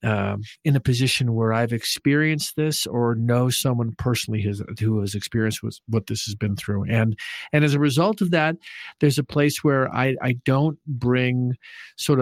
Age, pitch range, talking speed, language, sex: 50-69, 115-145 Hz, 180 wpm, English, male